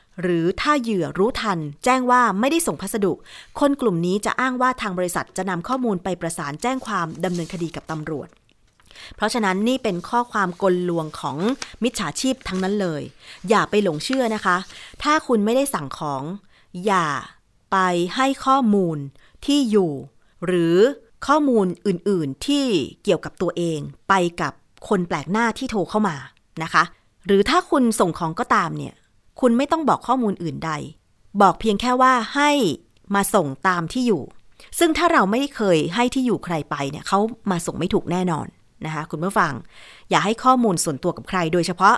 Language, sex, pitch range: Thai, female, 170-230 Hz